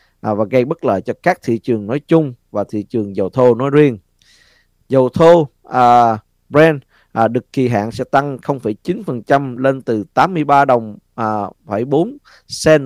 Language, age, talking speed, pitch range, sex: Vietnamese, 20-39, 155 wpm, 110-145 Hz, male